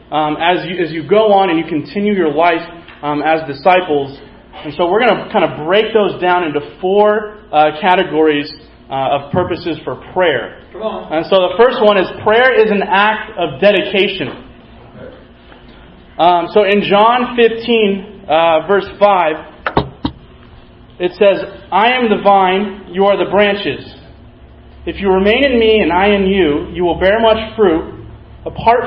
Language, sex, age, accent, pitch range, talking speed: English, male, 30-49, American, 165-205 Hz, 160 wpm